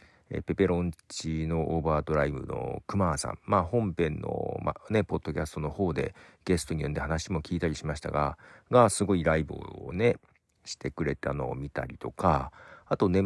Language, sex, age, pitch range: Japanese, male, 50-69, 80-110 Hz